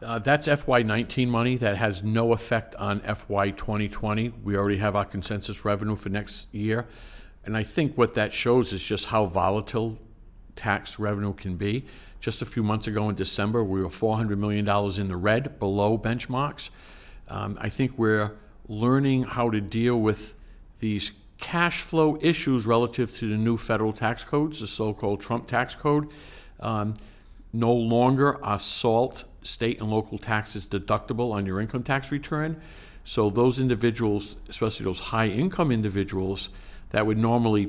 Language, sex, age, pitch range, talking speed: English, male, 50-69, 105-120 Hz, 160 wpm